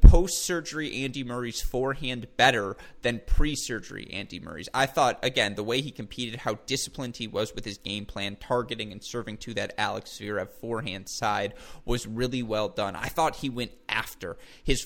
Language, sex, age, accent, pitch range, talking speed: English, male, 20-39, American, 115-145 Hz, 175 wpm